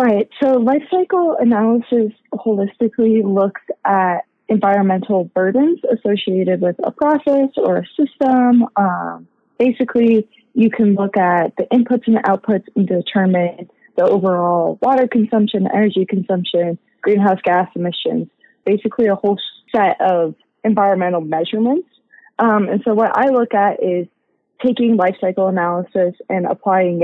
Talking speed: 135 wpm